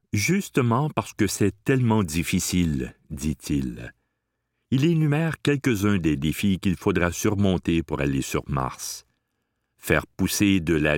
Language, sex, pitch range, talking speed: French, male, 80-115 Hz, 130 wpm